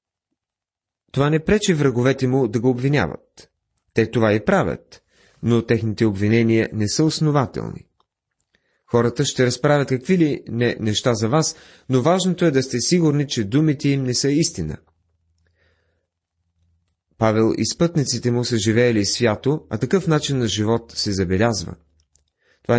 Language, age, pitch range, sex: Bulgarian, 30-49, 100-135 Hz, male